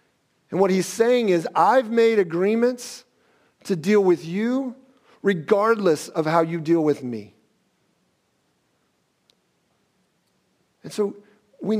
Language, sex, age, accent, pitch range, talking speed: English, male, 50-69, American, 140-200 Hz, 110 wpm